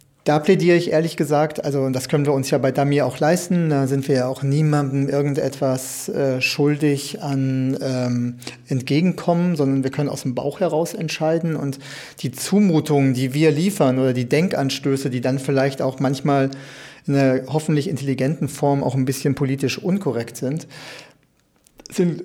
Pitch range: 130-150 Hz